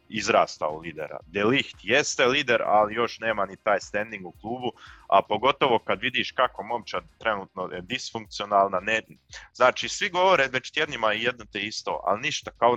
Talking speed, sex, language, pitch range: 170 wpm, male, Croatian, 100-120 Hz